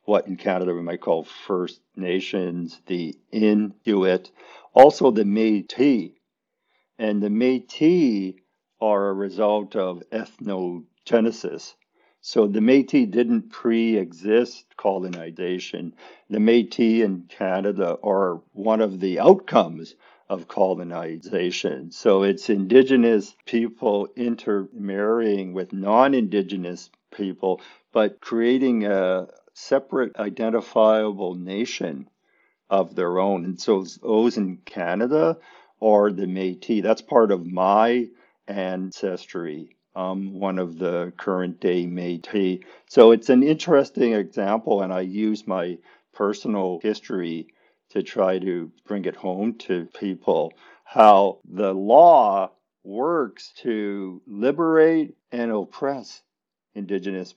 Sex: male